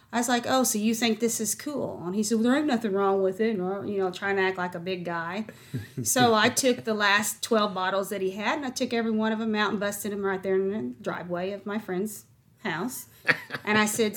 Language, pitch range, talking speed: English, 185-215 Hz, 265 wpm